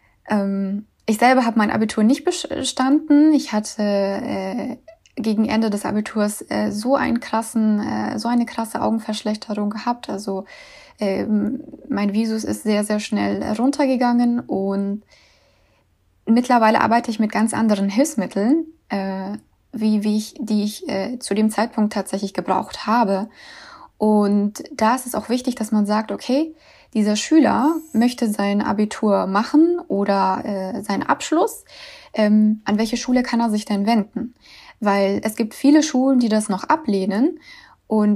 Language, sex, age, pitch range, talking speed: German, female, 20-39, 205-255 Hz, 145 wpm